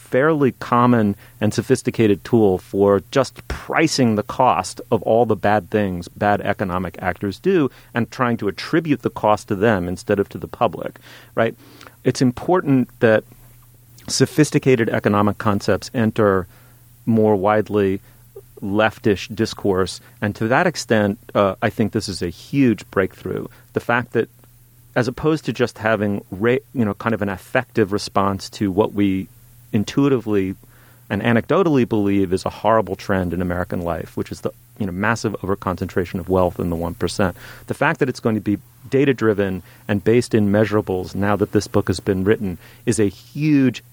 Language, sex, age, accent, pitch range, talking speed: English, male, 40-59, American, 100-120 Hz, 165 wpm